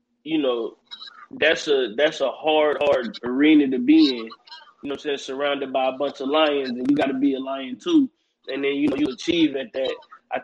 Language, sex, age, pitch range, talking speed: English, male, 20-39, 145-205 Hz, 230 wpm